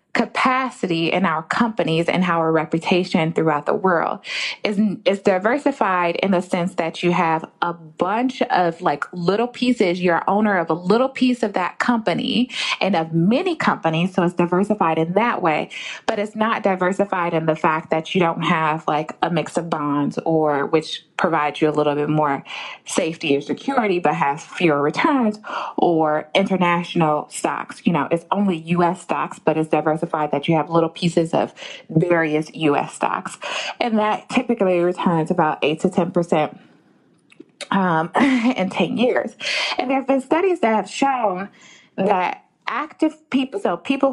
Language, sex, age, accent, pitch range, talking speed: English, female, 20-39, American, 165-235 Hz, 165 wpm